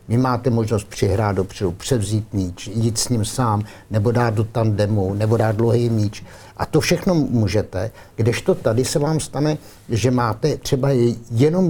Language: Czech